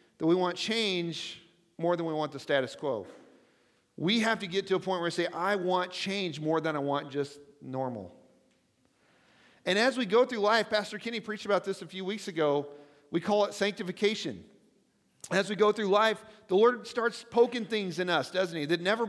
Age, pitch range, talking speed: 40-59, 155-205 Hz, 205 wpm